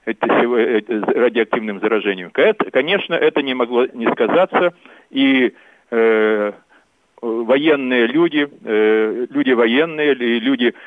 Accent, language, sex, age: native, Russian, male, 40-59